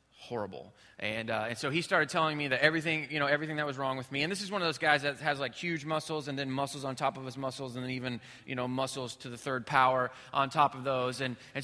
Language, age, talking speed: English, 20-39, 285 wpm